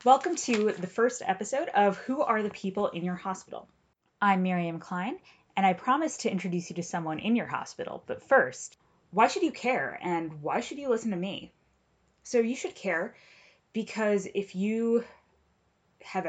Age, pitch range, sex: 20-39, 165-225 Hz, female